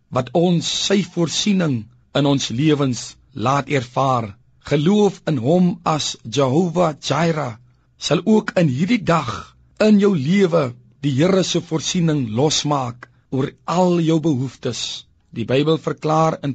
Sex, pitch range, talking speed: male, 130-175 Hz, 125 wpm